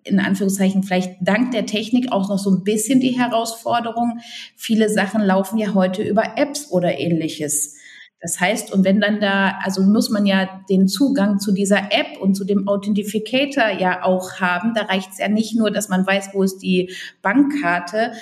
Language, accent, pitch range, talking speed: German, German, 190-235 Hz, 190 wpm